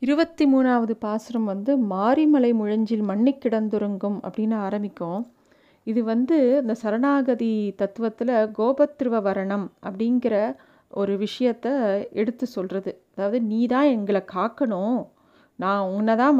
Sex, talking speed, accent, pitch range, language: female, 105 wpm, native, 205-250 Hz, Tamil